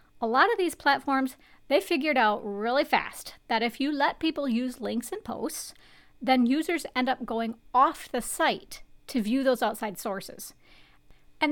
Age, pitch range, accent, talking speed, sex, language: 40-59, 225-275 Hz, American, 170 wpm, female, English